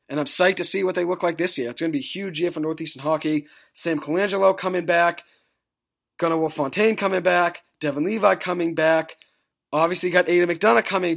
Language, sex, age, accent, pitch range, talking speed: English, male, 30-49, American, 145-185 Hz, 210 wpm